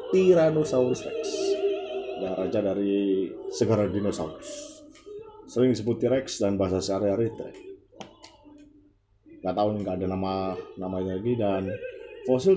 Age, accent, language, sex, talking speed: 30-49, native, Indonesian, male, 115 wpm